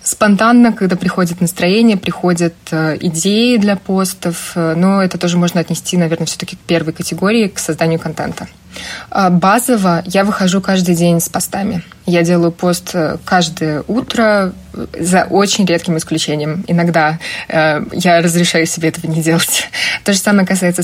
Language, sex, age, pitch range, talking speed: Russian, female, 20-39, 165-190 Hz, 140 wpm